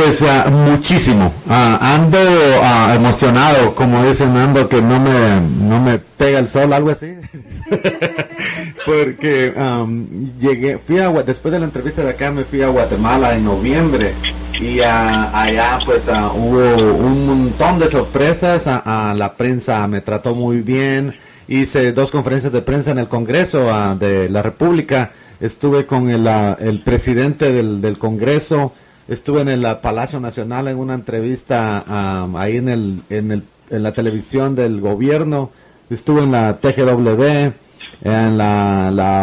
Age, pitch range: 40-59, 110-140 Hz